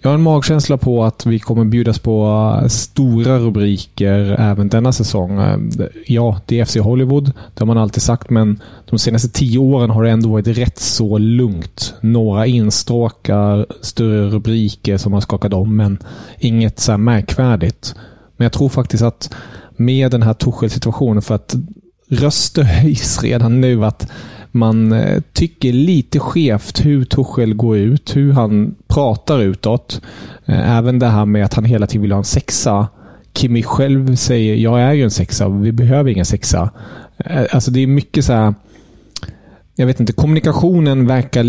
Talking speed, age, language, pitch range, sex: 165 wpm, 30-49, Swedish, 105-125 Hz, male